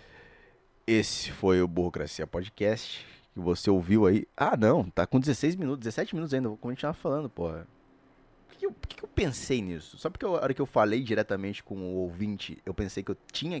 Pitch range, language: 95-125 Hz, Portuguese